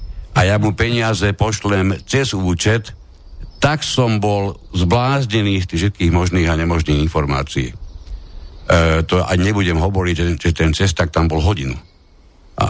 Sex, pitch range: male, 80-105 Hz